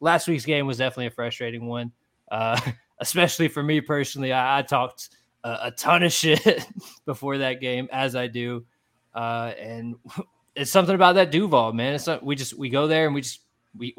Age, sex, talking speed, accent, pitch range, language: 20-39, male, 195 wpm, American, 120-145 Hz, English